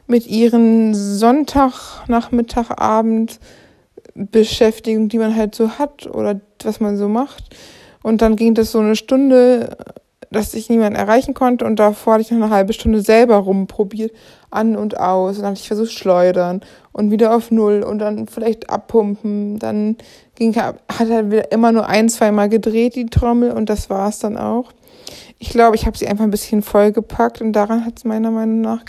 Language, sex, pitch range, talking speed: German, female, 215-235 Hz, 185 wpm